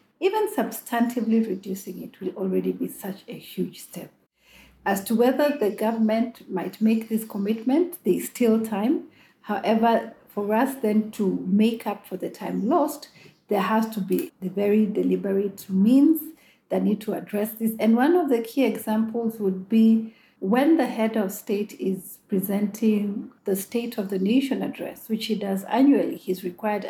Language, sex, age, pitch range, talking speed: English, female, 50-69, 200-245 Hz, 165 wpm